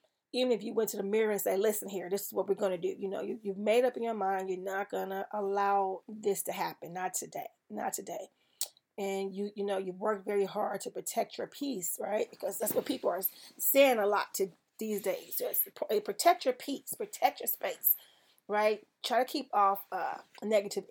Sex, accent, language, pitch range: female, American, English, 195-220 Hz